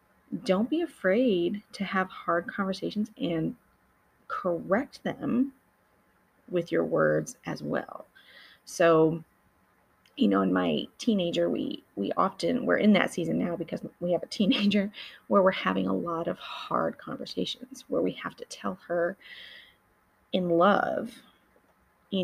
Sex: female